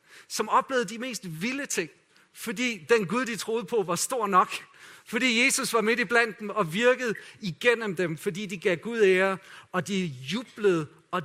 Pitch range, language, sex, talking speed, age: 185-230 Hz, Danish, male, 180 wpm, 40-59